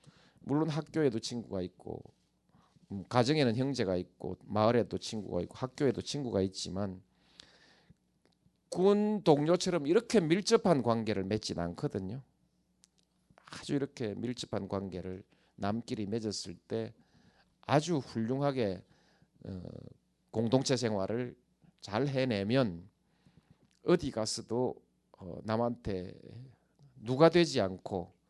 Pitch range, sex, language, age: 100-135 Hz, male, Korean, 40-59